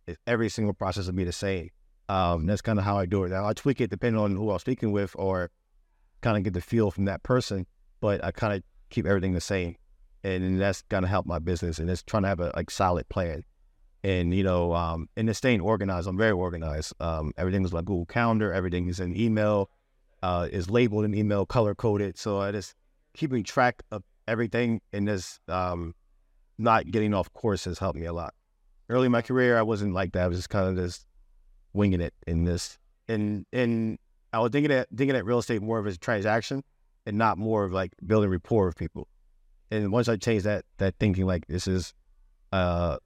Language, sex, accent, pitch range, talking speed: English, male, American, 90-110 Hz, 220 wpm